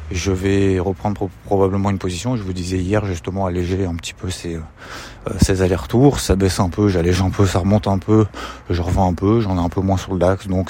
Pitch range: 95-115 Hz